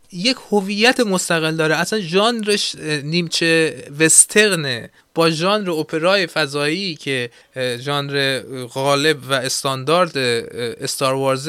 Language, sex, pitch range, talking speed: Persian, male, 145-200 Hz, 95 wpm